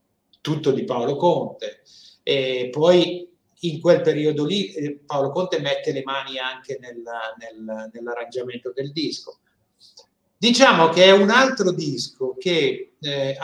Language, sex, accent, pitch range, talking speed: Italian, male, native, 130-180 Hz, 130 wpm